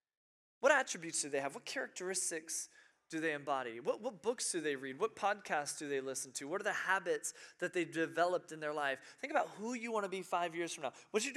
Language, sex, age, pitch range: English, male, 20-39, 135-170 Hz